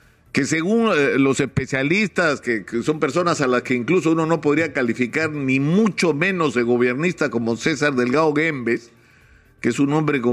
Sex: male